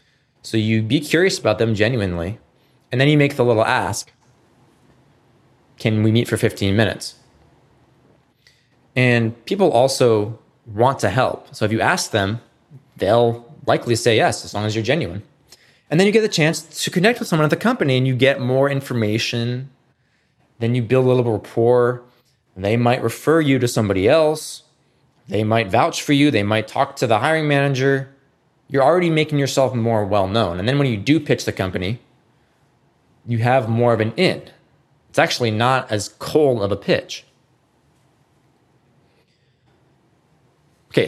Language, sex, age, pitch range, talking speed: English, male, 20-39, 110-140 Hz, 165 wpm